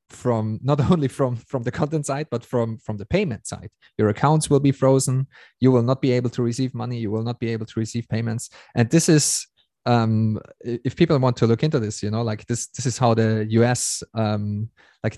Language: English